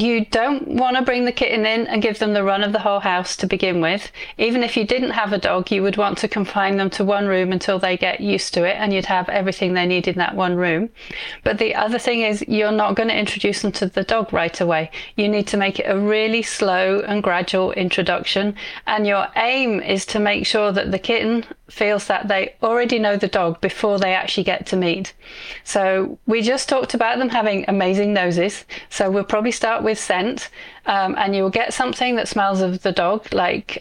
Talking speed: 230 wpm